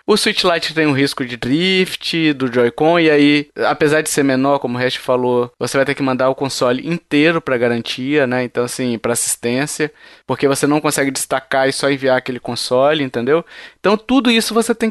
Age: 20-39